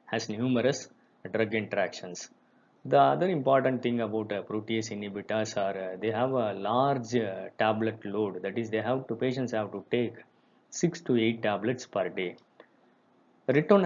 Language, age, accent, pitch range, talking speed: Tamil, 20-39, native, 105-125 Hz, 170 wpm